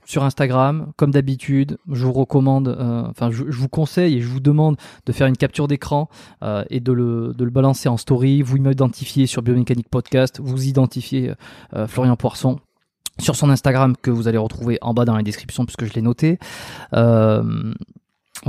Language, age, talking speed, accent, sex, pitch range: French, 20-39, 190 wpm, French, male, 120-140 Hz